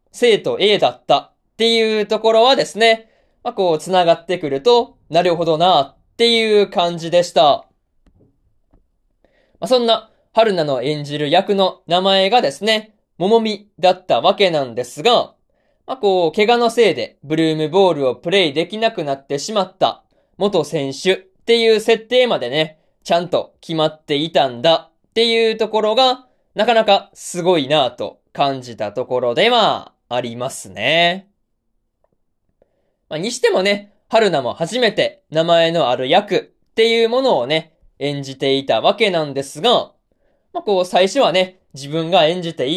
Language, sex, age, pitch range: Japanese, male, 20-39, 160-220 Hz